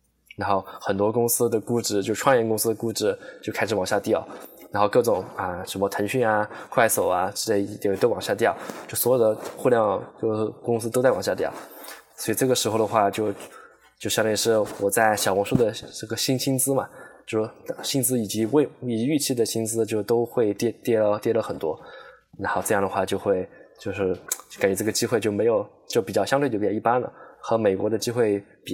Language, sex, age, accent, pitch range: English, male, 20-39, Chinese, 105-120 Hz